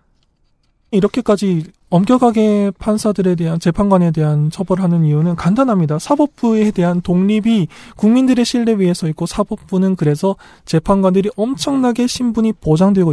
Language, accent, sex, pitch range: Korean, native, male, 155-205 Hz